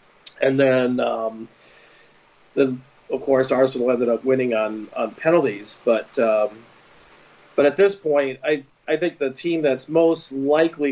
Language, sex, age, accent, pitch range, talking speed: English, male, 40-59, American, 115-140 Hz, 150 wpm